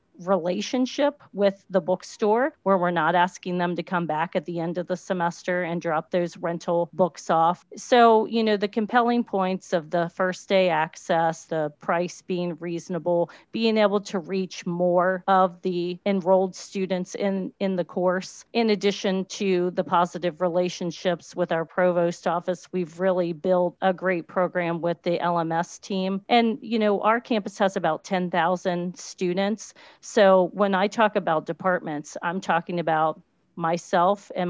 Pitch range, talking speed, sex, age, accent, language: 175-200 Hz, 160 wpm, female, 40-59, American, English